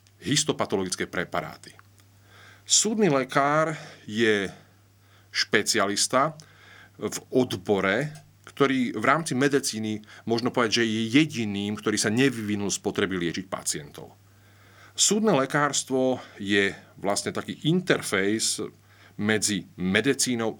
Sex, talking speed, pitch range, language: male, 95 wpm, 100-135 Hz, Slovak